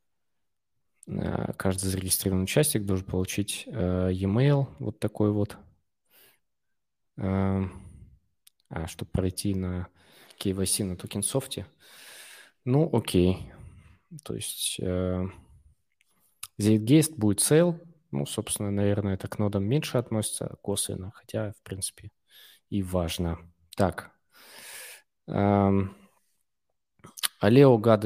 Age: 20-39